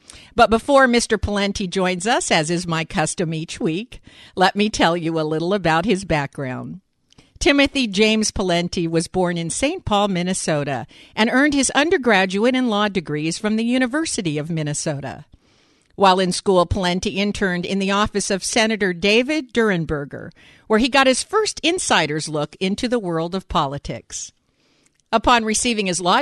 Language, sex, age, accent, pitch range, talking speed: English, female, 50-69, American, 165-225 Hz, 160 wpm